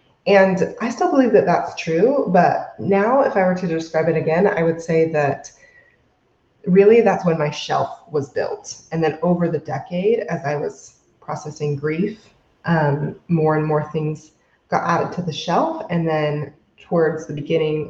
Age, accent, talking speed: 20-39, American, 175 wpm